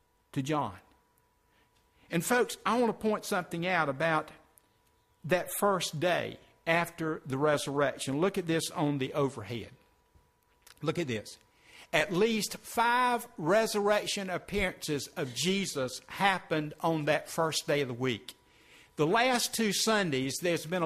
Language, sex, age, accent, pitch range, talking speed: English, male, 60-79, American, 145-190 Hz, 135 wpm